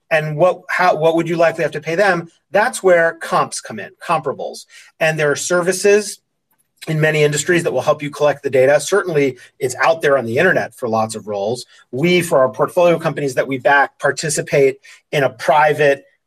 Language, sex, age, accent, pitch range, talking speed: English, male, 30-49, American, 135-180 Hz, 200 wpm